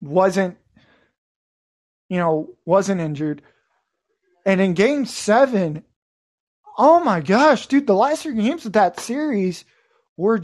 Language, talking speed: English, 120 wpm